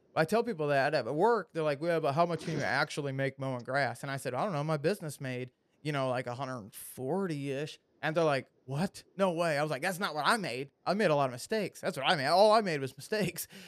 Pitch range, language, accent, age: 150-210 Hz, English, American, 20-39